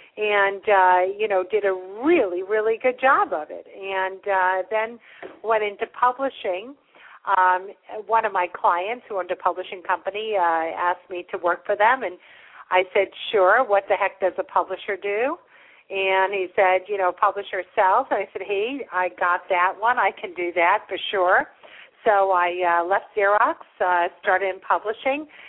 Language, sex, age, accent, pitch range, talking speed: English, female, 50-69, American, 185-220 Hz, 180 wpm